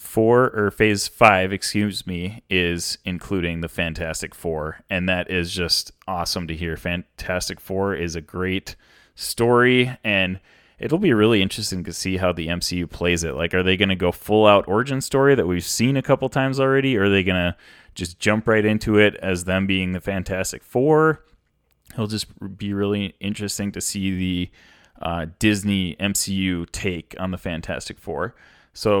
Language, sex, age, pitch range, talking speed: English, male, 30-49, 90-105 Hz, 170 wpm